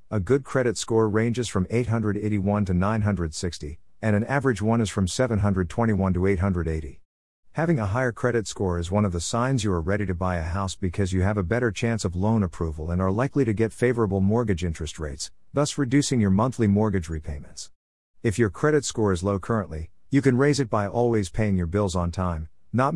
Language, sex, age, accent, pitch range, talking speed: English, male, 50-69, American, 90-120 Hz, 205 wpm